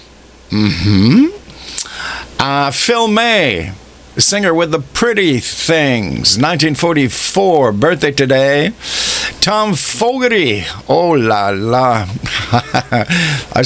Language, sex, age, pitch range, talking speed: English, male, 50-69, 110-165 Hz, 80 wpm